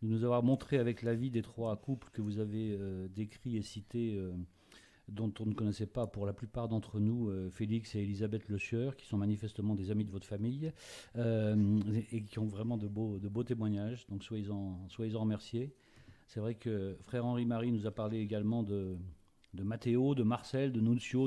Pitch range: 105-120 Hz